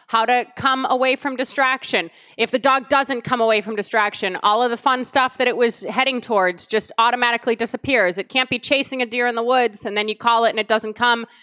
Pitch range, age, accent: 215-260 Hz, 30-49, American